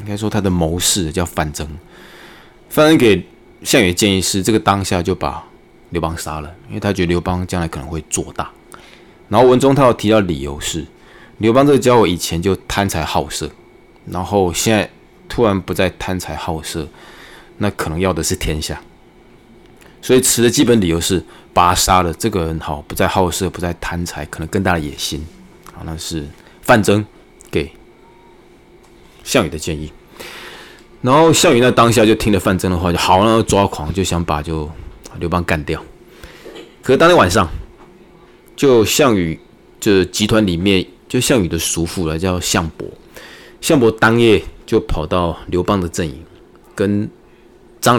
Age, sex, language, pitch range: 20-39, male, Chinese, 80-105 Hz